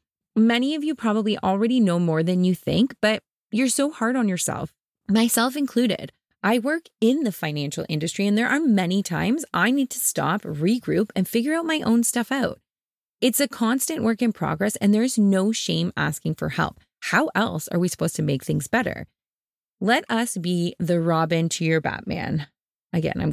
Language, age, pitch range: English, 20-39, 160-235 Hz